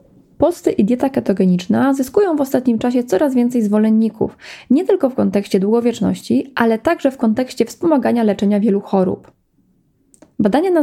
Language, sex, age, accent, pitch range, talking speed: Polish, female, 20-39, native, 205-255 Hz, 145 wpm